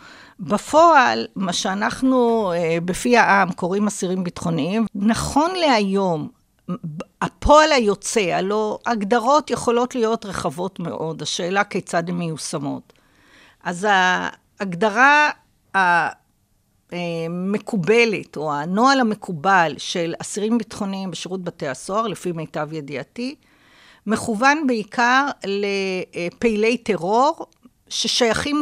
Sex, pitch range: female, 180-255 Hz